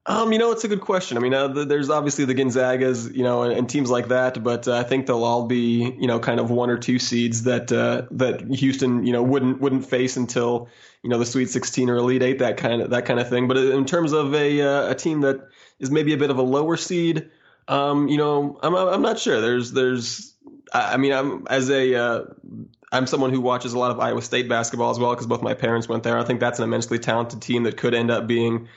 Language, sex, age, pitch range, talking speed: English, male, 20-39, 120-135 Hz, 260 wpm